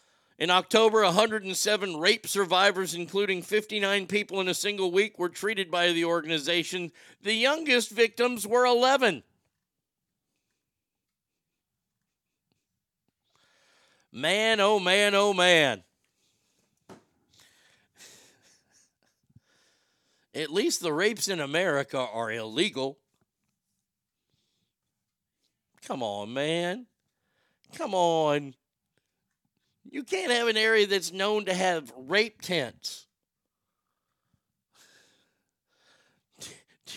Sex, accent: male, American